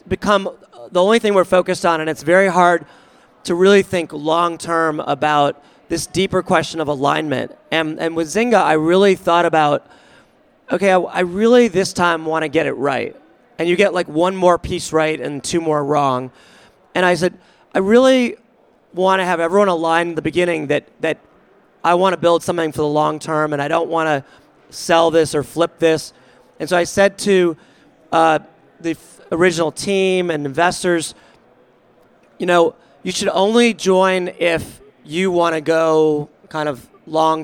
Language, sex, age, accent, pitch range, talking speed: English, male, 30-49, American, 155-185 Hz, 180 wpm